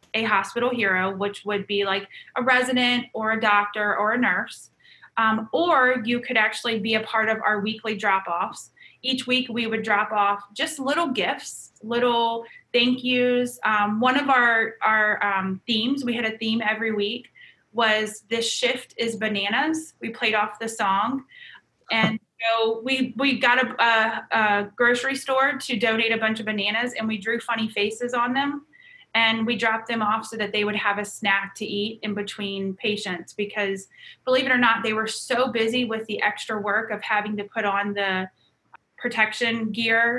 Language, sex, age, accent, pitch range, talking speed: English, female, 20-39, American, 210-245 Hz, 185 wpm